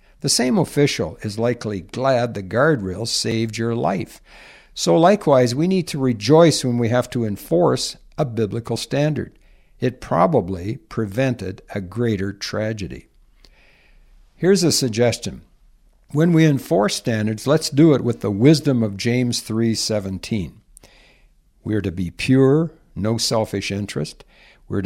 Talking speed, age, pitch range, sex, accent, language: 135 wpm, 60-79, 105-140 Hz, male, American, English